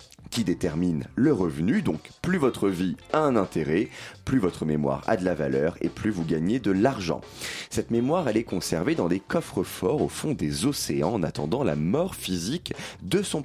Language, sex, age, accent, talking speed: French, male, 30-49, French, 195 wpm